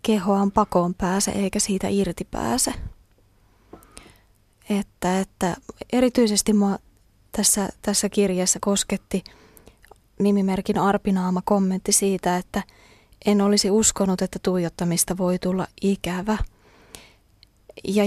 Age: 20-39